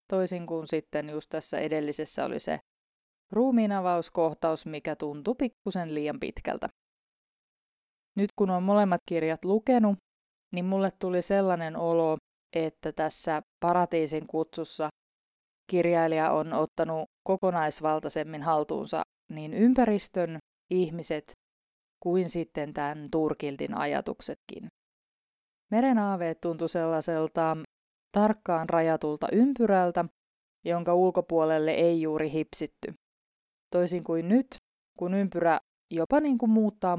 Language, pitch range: Finnish, 155-195 Hz